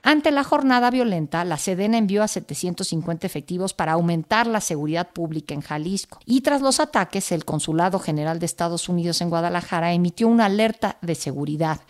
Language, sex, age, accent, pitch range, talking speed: Spanish, female, 50-69, Mexican, 175-225 Hz, 170 wpm